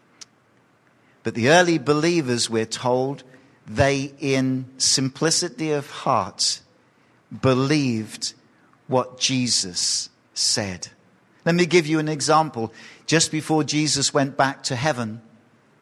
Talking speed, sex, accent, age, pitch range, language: 105 wpm, male, British, 50-69, 115-140 Hz, English